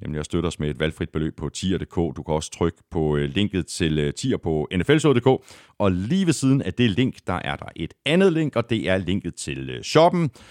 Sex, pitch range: male, 80-115 Hz